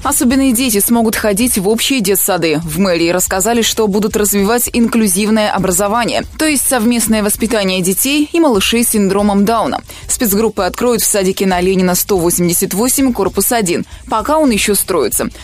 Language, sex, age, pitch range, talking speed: Russian, female, 20-39, 190-245 Hz, 150 wpm